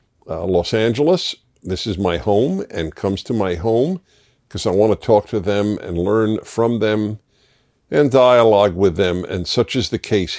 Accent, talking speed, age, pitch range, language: American, 185 wpm, 50-69, 95-125 Hz, English